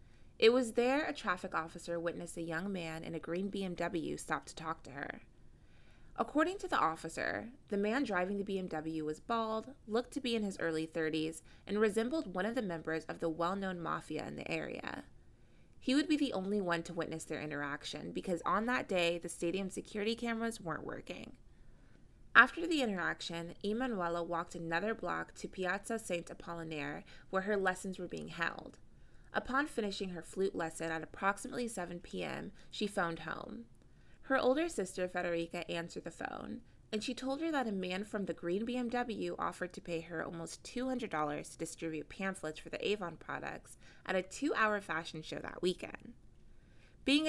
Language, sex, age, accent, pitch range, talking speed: English, female, 20-39, American, 165-225 Hz, 175 wpm